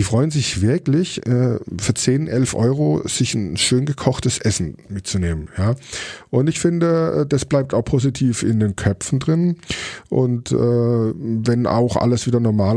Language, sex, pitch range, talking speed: German, male, 95-120 Hz, 140 wpm